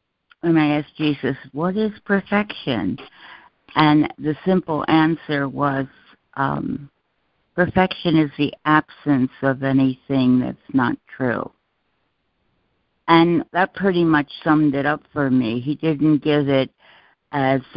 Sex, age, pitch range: female, 60-79, 125-150 Hz